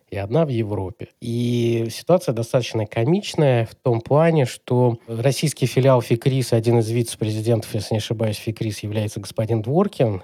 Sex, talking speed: male, 145 wpm